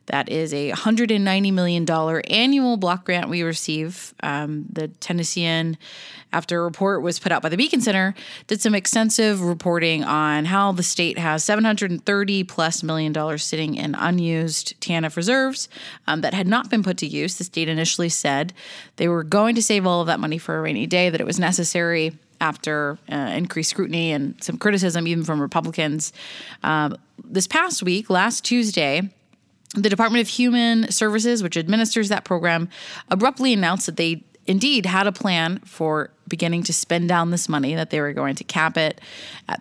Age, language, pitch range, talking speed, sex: 20-39, English, 160-205 Hz, 175 wpm, female